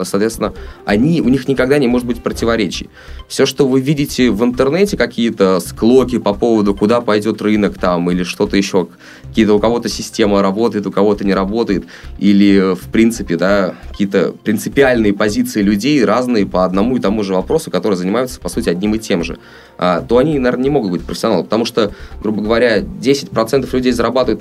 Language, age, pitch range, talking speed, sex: Russian, 20-39, 90-115 Hz, 175 wpm, male